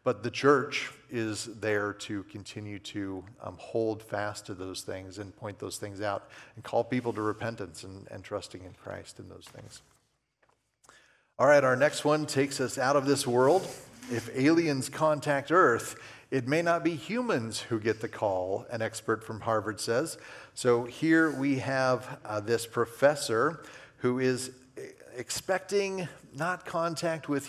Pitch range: 110-135 Hz